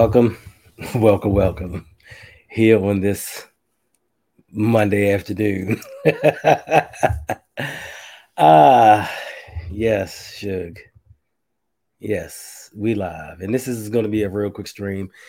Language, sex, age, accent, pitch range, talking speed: English, male, 20-39, American, 95-115 Hz, 95 wpm